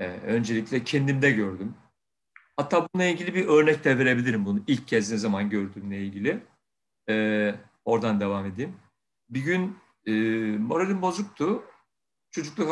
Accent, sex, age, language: native, male, 60-79, Turkish